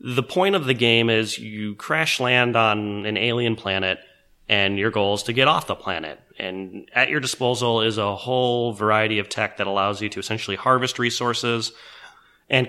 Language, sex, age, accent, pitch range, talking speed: English, male, 30-49, American, 110-125 Hz, 190 wpm